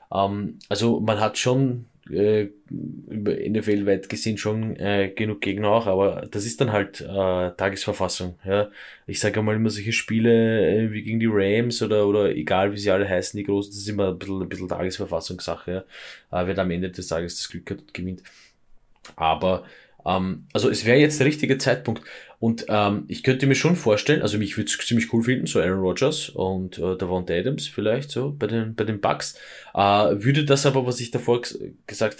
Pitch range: 95-120 Hz